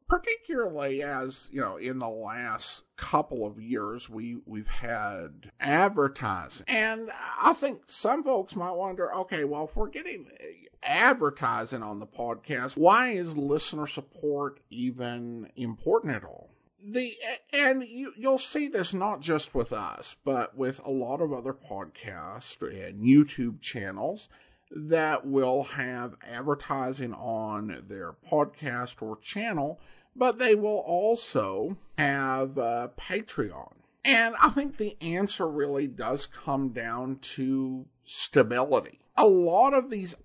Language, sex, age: English, male, 50-69